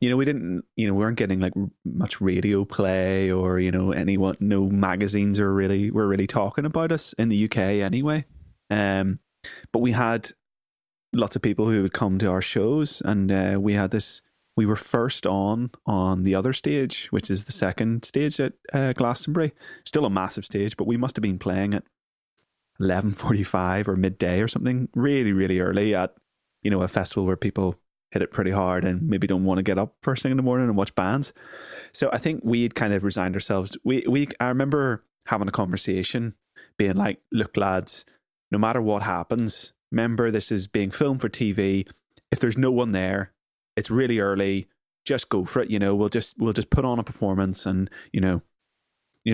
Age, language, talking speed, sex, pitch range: 20-39, English, 200 wpm, male, 95-115 Hz